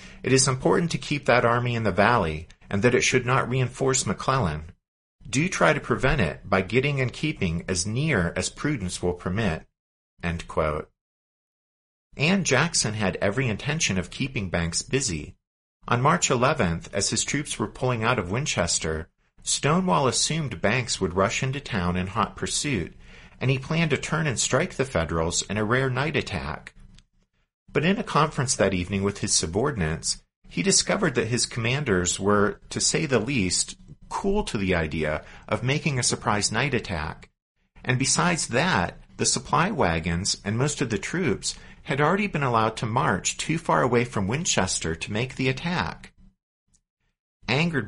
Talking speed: 170 wpm